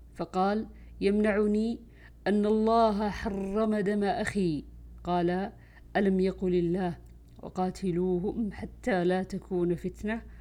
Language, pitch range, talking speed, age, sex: Arabic, 150-190 Hz, 90 wpm, 50-69, female